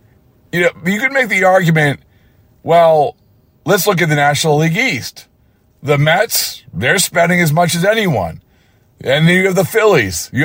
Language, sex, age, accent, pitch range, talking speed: English, male, 40-59, American, 115-180 Hz, 170 wpm